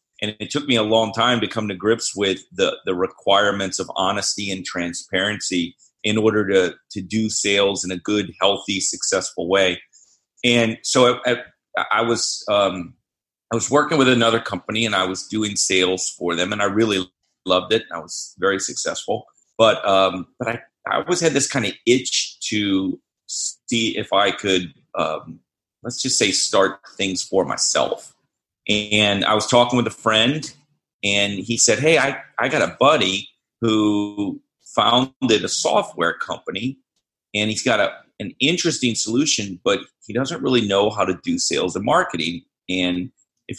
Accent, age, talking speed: American, 40-59, 170 wpm